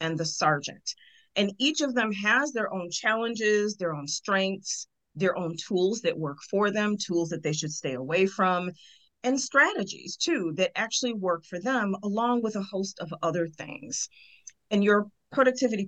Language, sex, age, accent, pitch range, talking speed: English, female, 40-59, American, 170-225 Hz, 175 wpm